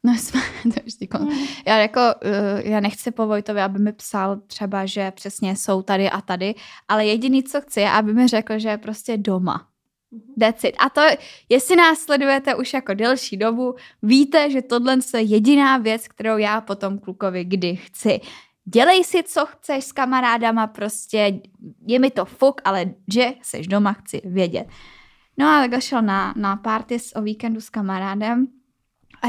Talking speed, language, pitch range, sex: 170 wpm, Czech, 210-275 Hz, female